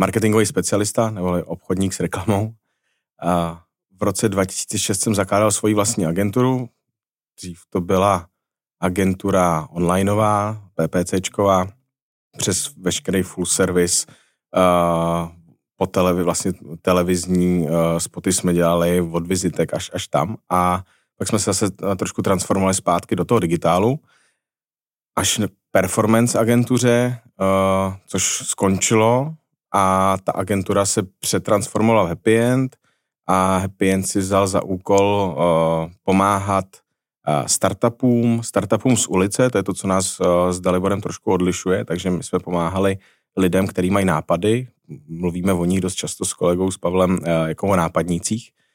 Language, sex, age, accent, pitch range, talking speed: Czech, male, 30-49, native, 90-110 Hz, 125 wpm